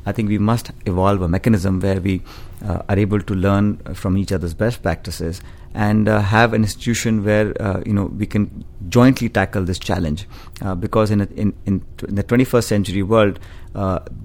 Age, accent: 30-49, Indian